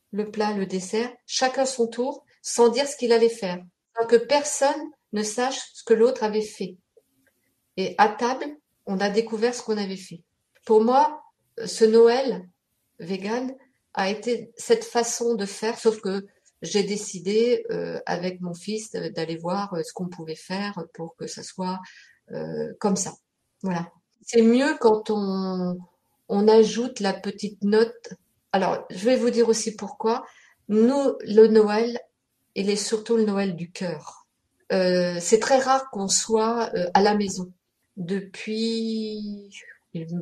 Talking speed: 155 wpm